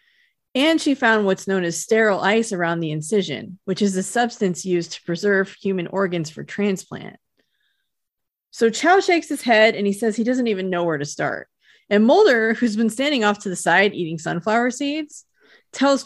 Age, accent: 30-49, American